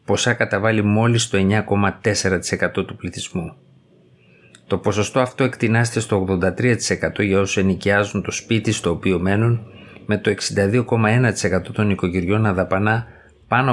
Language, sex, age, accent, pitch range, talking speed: Greek, male, 50-69, native, 95-110 Hz, 120 wpm